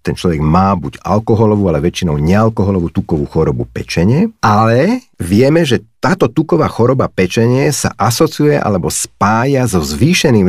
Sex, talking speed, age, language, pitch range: male, 135 wpm, 50-69, Slovak, 95-130 Hz